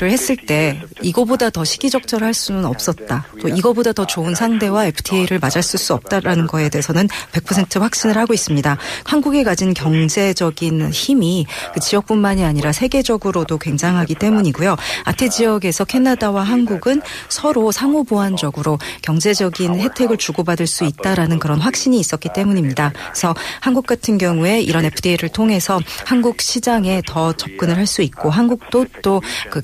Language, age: Korean, 40-59